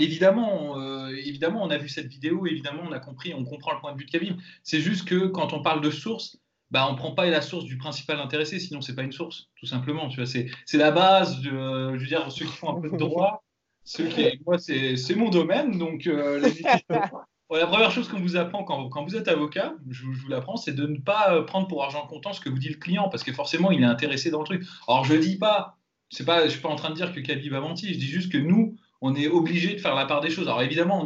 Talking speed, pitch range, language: 285 wpm, 135-170 Hz, French